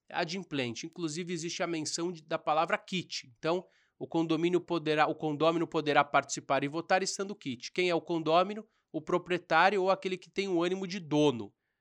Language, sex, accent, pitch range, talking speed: Portuguese, male, Brazilian, 140-180 Hz, 175 wpm